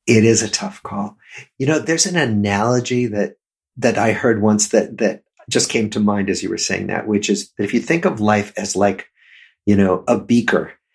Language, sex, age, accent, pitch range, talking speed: English, male, 50-69, American, 105-135 Hz, 220 wpm